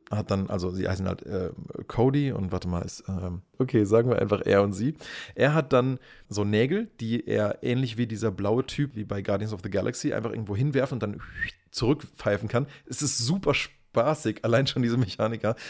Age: 30-49